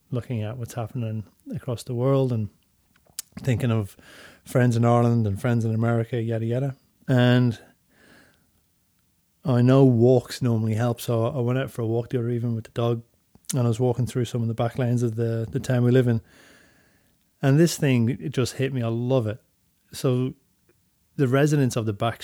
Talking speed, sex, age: 190 wpm, male, 30-49